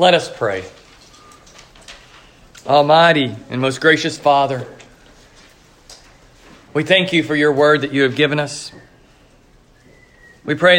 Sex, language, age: male, English, 40-59